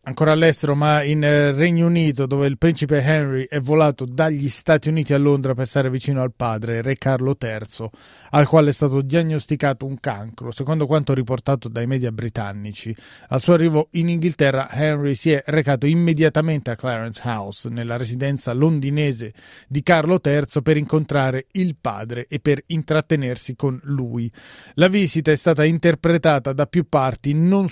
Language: Italian